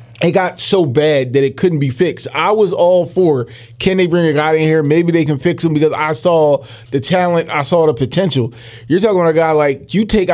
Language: English